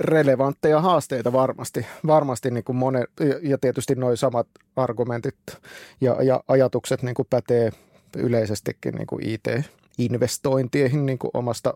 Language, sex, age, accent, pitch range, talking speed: Finnish, male, 30-49, native, 115-135 Hz, 115 wpm